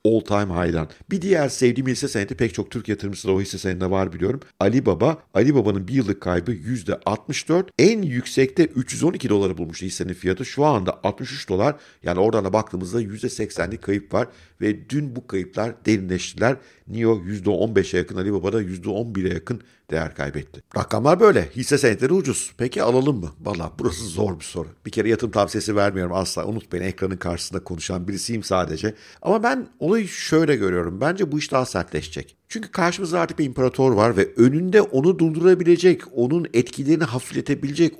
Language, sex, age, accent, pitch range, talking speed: Turkish, male, 50-69, native, 95-135 Hz, 165 wpm